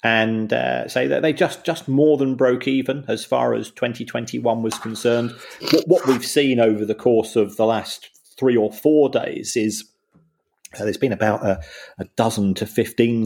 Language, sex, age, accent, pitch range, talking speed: English, male, 40-59, British, 105-120 Hz, 185 wpm